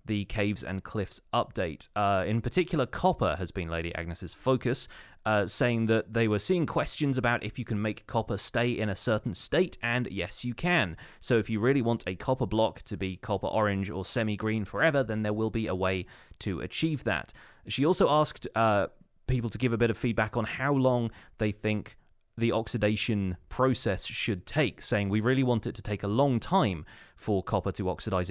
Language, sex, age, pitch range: English, male, 30-49, 95-125 Hz